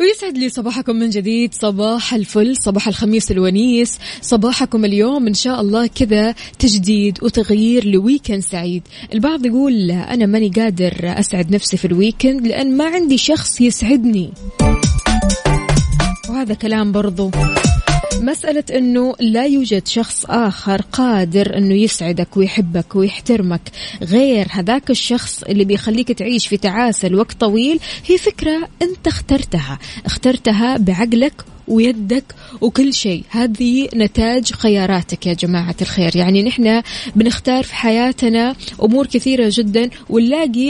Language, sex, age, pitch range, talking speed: Arabic, female, 20-39, 200-255 Hz, 120 wpm